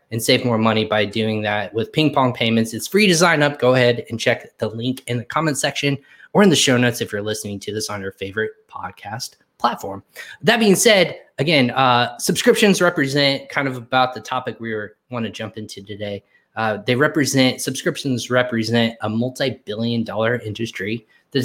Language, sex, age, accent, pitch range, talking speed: English, male, 20-39, American, 110-135 Hz, 195 wpm